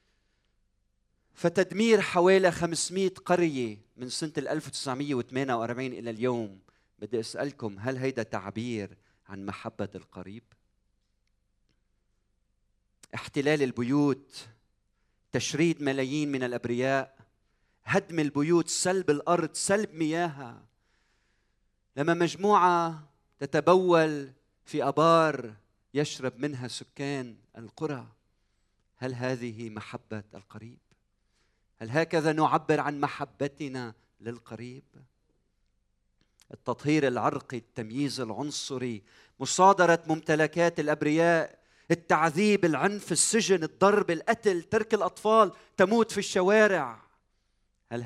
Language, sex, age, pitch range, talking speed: Arabic, male, 40-59, 110-160 Hz, 80 wpm